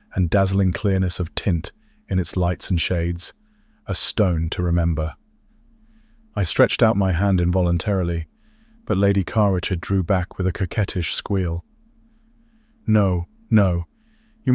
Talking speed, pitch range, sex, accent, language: 135 wpm, 90-110 Hz, male, British, English